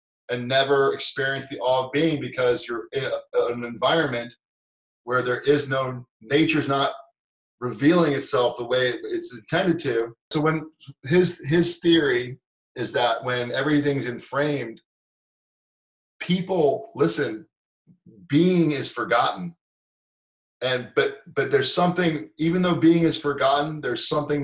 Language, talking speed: English, 135 wpm